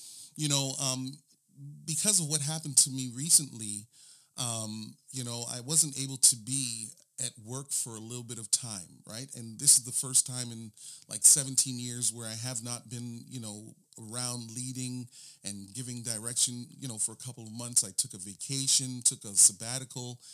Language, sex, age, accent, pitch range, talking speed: English, male, 40-59, American, 120-145 Hz, 185 wpm